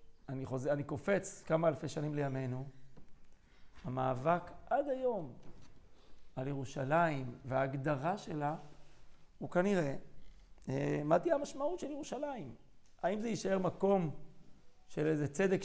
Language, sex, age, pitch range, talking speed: Hebrew, male, 40-59, 145-180 Hz, 115 wpm